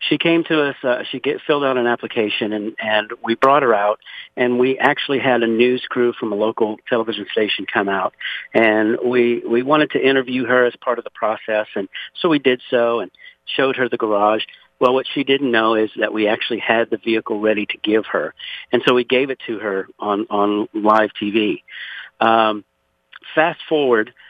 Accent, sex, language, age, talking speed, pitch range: American, male, English, 50-69, 205 wpm, 110-135 Hz